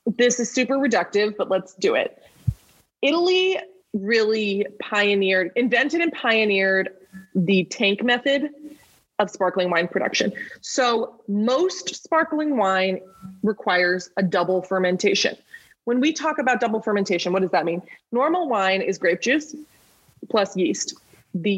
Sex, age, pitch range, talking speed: female, 20-39, 185-245 Hz, 130 wpm